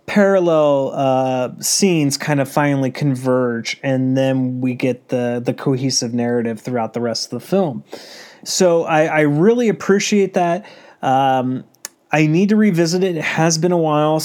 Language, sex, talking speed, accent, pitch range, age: English, male, 160 wpm, American, 130-170 Hz, 30-49